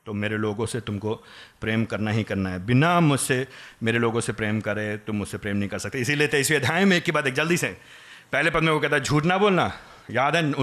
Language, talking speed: Hindi, 215 wpm